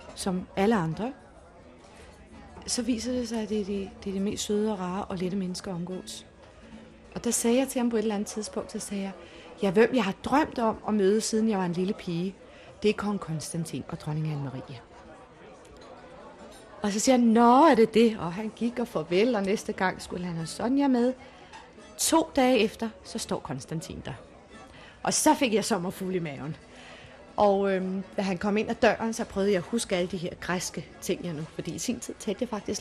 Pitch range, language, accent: 180-225 Hz, Danish, native